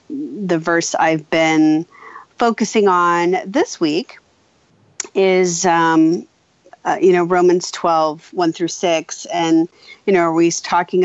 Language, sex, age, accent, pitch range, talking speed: English, female, 40-59, American, 165-205 Hz, 125 wpm